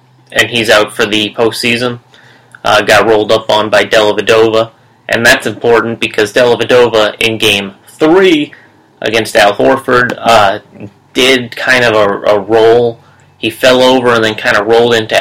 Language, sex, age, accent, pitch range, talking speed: English, male, 30-49, American, 110-125 Hz, 165 wpm